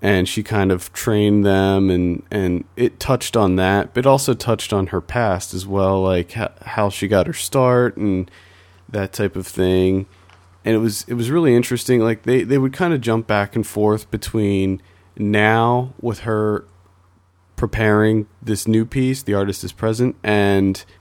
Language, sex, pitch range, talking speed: English, male, 90-115 Hz, 175 wpm